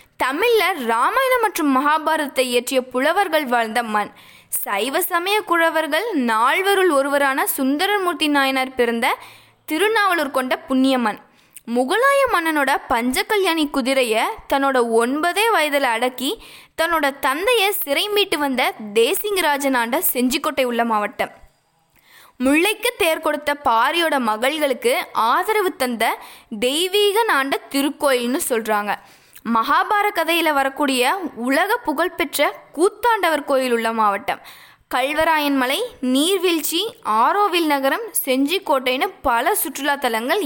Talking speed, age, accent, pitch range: 100 wpm, 20-39, native, 260-365 Hz